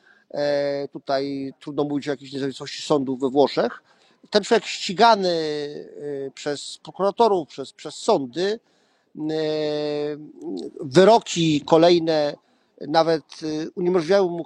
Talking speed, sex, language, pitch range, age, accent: 90 wpm, male, Polish, 165-215 Hz, 40-59, native